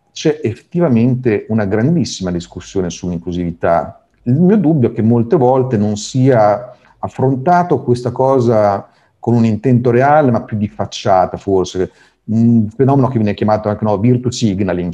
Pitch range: 100-130 Hz